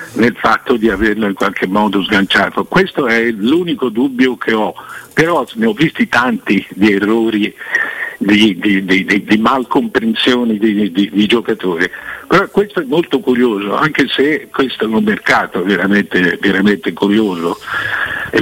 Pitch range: 100-125 Hz